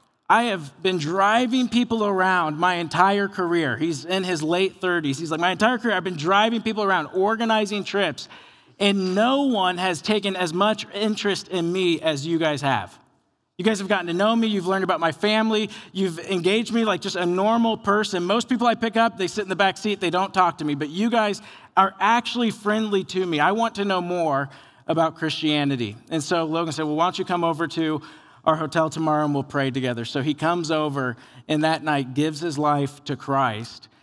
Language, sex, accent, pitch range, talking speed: English, male, American, 160-200 Hz, 215 wpm